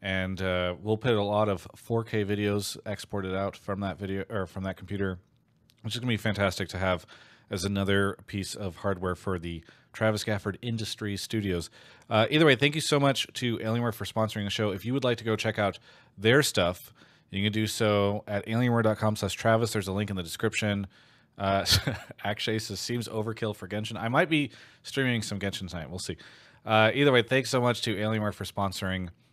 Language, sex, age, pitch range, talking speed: English, male, 30-49, 100-120 Hz, 200 wpm